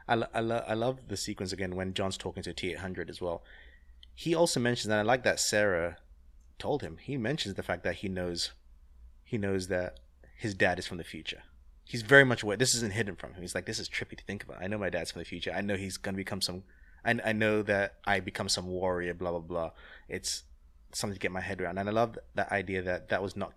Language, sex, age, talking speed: English, male, 20-39, 250 wpm